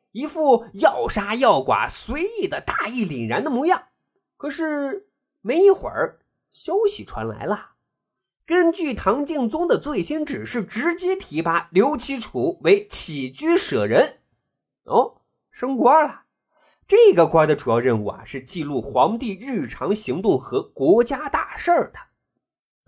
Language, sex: Chinese, male